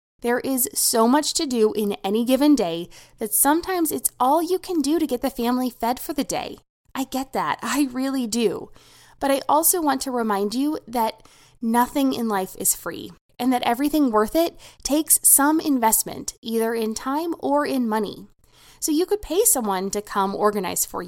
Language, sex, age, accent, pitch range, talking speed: English, female, 20-39, American, 205-290 Hz, 190 wpm